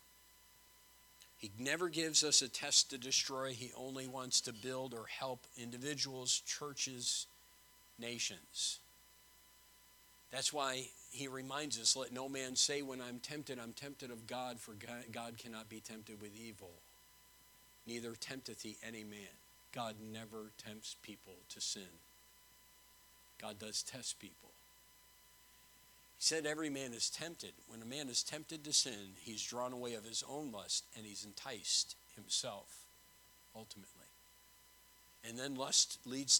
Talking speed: 140 wpm